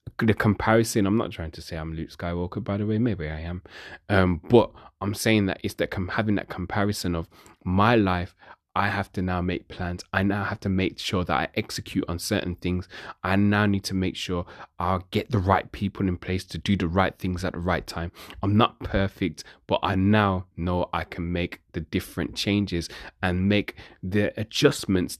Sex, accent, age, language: male, British, 20-39, English